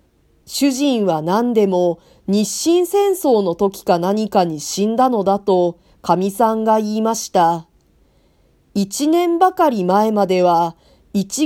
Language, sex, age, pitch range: Japanese, female, 40-59, 180-255 Hz